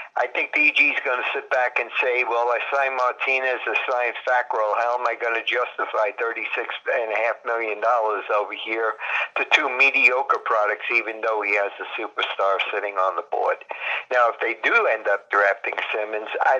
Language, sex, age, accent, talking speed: English, male, 50-69, American, 175 wpm